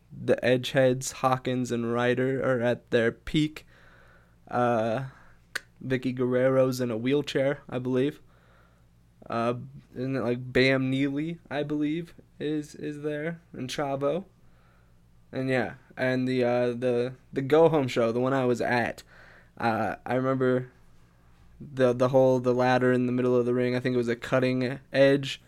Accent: American